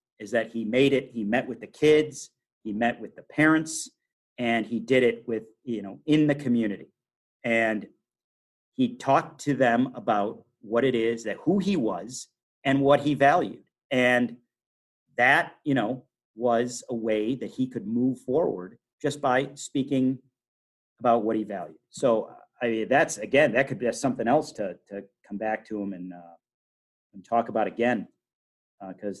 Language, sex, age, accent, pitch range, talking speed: English, male, 40-59, American, 105-125 Hz, 175 wpm